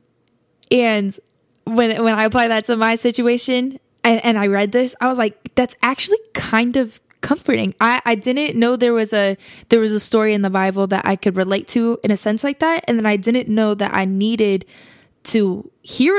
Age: 10-29